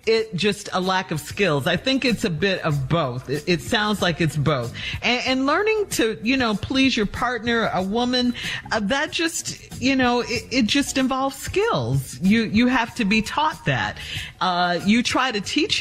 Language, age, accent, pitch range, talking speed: English, 50-69, American, 155-215 Hz, 195 wpm